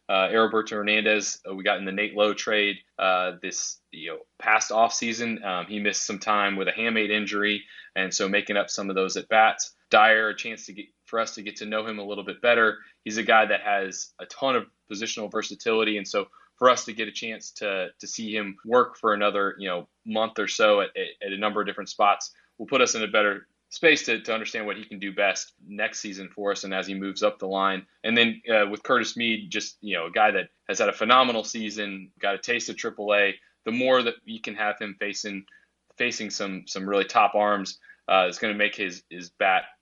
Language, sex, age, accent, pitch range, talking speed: English, male, 20-39, American, 100-110 Hz, 240 wpm